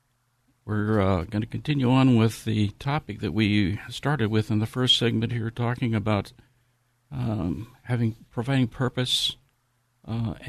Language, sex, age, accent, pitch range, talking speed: English, male, 60-79, American, 115-130 Hz, 145 wpm